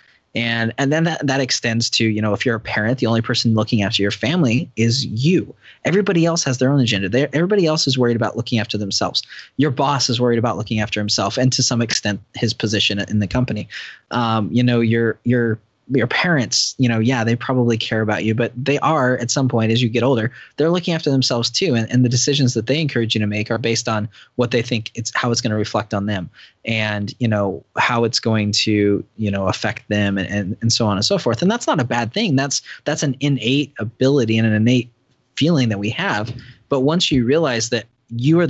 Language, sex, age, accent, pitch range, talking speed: English, male, 20-39, American, 110-130 Hz, 235 wpm